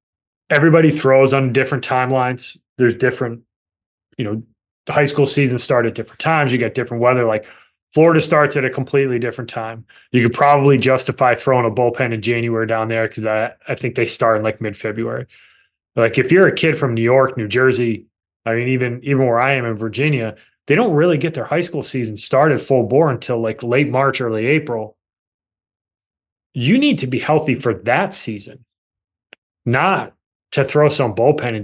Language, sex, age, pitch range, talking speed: English, male, 20-39, 115-140 Hz, 190 wpm